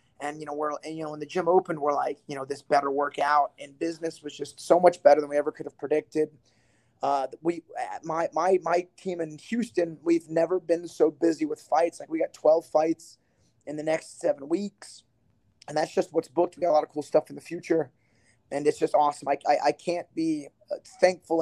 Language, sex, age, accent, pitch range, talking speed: English, male, 30-49, American, 145-170 Hz, 225 wpm